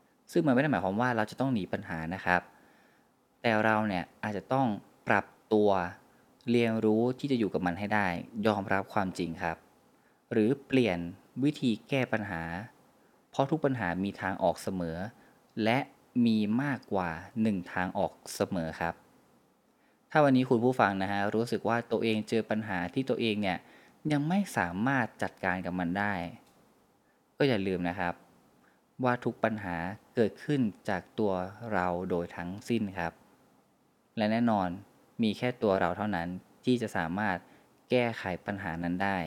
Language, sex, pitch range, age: Thai, male, 90-115 Hz, 20-39